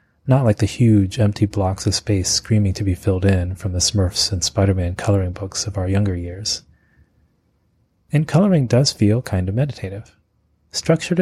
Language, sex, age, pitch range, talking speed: English, male, 30-49, 95-120 Hz, 170 wpm